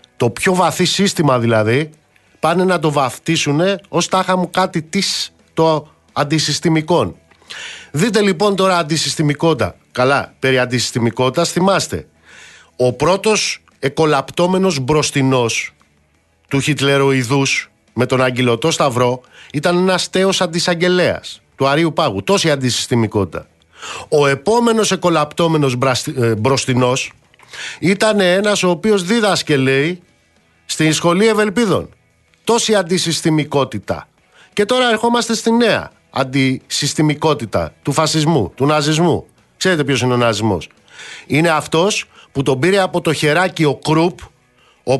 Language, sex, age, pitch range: Greek, male, 50-69, 130-185 Hz